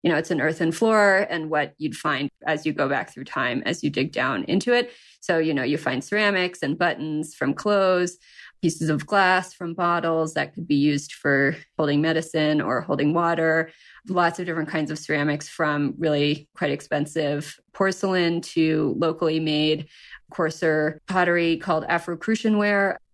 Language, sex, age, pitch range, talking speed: English, female, 20-39, 155-185 Hz, 170 wpm